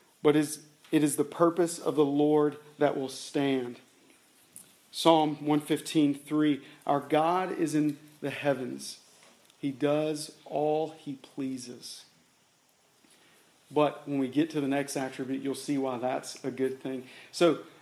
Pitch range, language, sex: 140-160 Hz, English, male